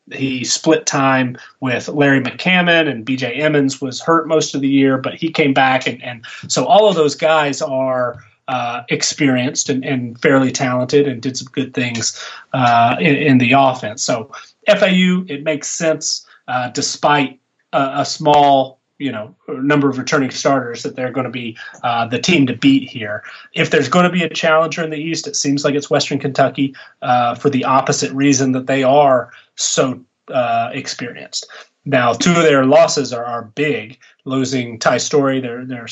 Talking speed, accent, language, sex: 185 wpm, American, English, male